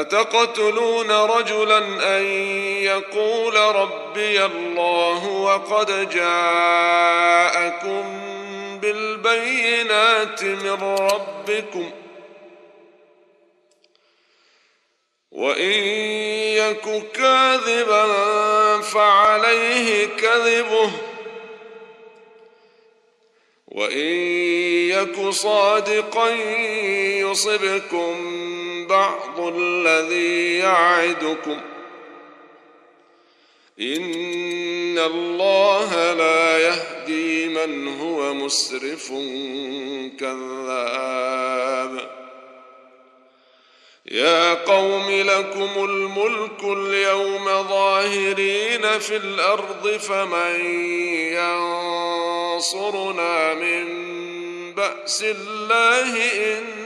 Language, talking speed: Arabic, 45 wpm